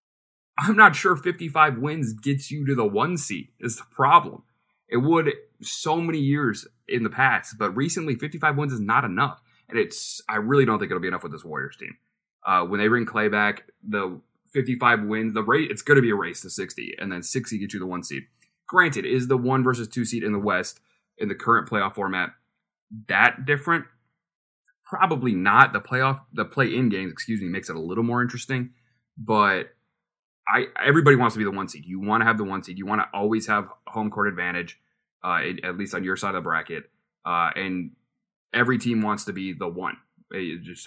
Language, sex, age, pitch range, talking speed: English, male, 30-49, 95-130 Hz, 215 wpm